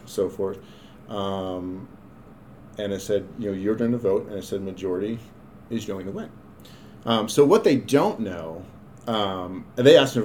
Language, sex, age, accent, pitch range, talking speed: English, male, 40-59, American, 100-120 Hz, 175 wpm